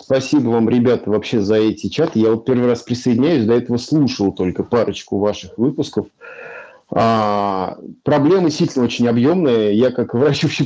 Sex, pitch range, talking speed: male, 115-155 Hz, 150 wpm